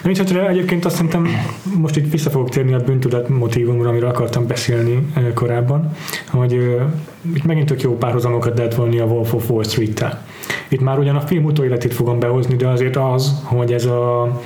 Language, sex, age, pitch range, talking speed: Hungarian, male, 20-39, 120-140 Hz, 180 wpm